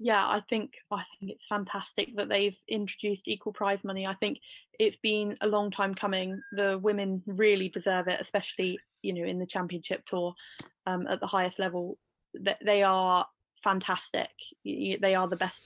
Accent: British